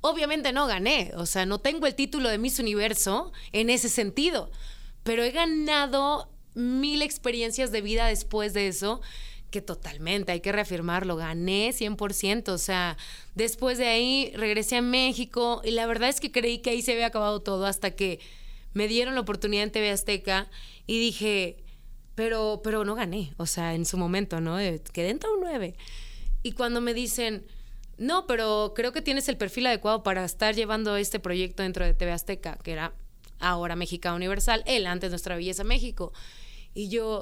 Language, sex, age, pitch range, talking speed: Spanish, female, 20-39, 190-240 Hz, 180 wpm